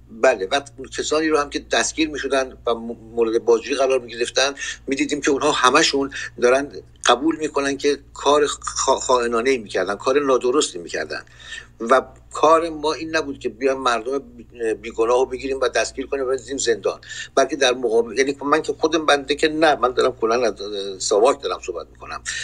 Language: Persian